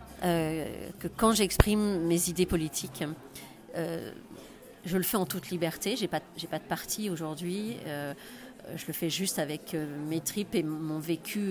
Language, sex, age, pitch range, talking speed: French, female, 40-59, 165-215 Hz, 175 wpm